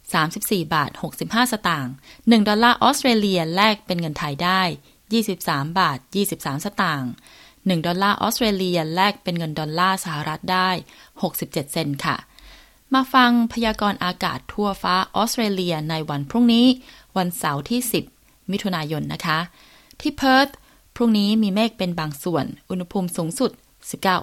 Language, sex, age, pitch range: Thai, female, 20-39, 165-220 Hz